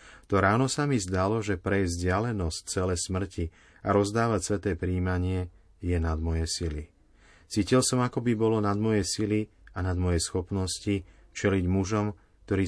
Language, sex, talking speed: Slovak, male, 155 wpm